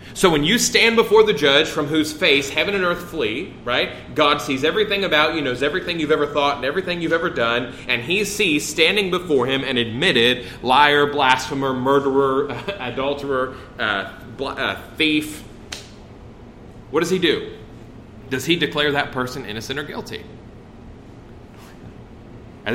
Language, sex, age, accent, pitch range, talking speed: English, male, 30-49, American, 115-155 Hz, 155 wpm